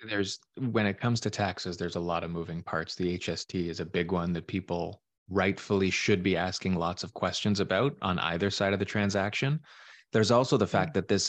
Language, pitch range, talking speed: English, 85-100 Hz, 215 wpm